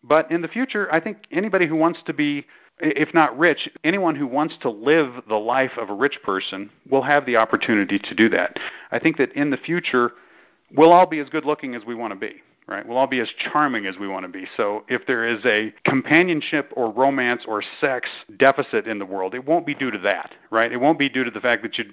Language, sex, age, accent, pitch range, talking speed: English, male, 50-69, American, 115-150 Hz, 245 wpm